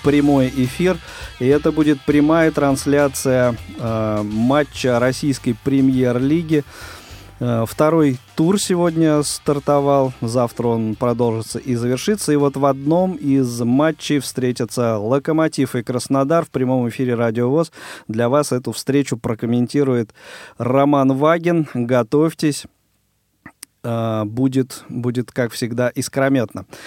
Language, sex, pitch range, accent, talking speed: Russian, male, 120-150 Hz, native, 105 wpm